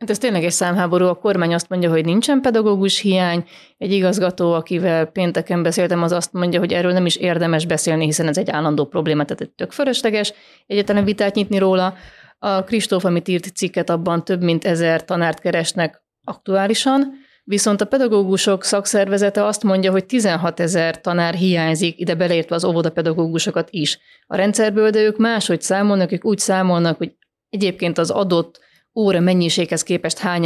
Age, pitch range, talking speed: 30-49, 170-205 Hz, 160 wpm